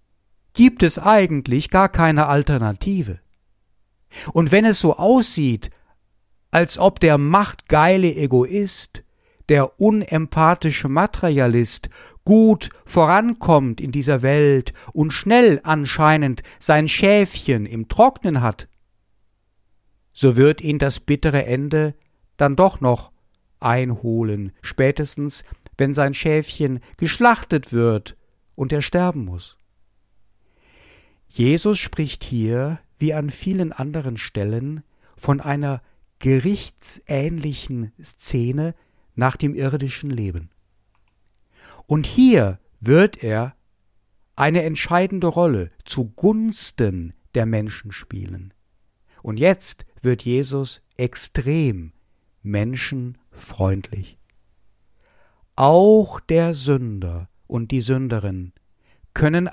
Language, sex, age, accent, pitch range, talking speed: German, male, 60-79, German, 100-155 Hz, 95 wpm